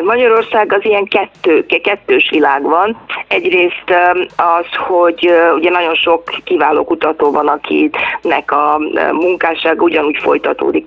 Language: Hungarian